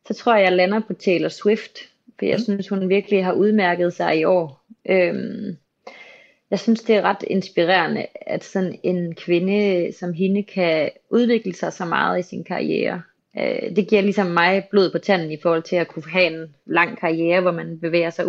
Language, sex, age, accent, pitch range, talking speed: Danish, female, 30-49, native, 175-205 Hz, 190 wpm